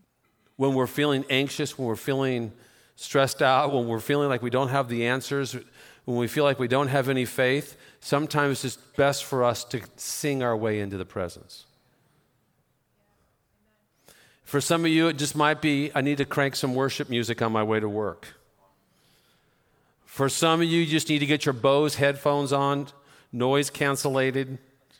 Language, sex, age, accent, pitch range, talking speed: English, male, 50-69, American, 115-145 Hz, 175 wpm